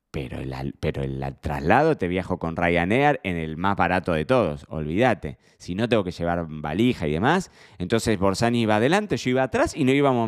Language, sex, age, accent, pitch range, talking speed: Spanish, male, 20-39, Argentinian, 85-115 Hz, 200 wpm